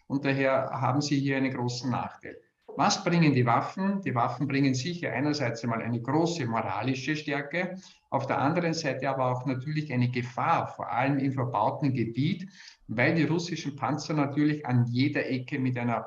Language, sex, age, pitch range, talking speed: German, male, 50-69, 120-150 Hz, 170 wpm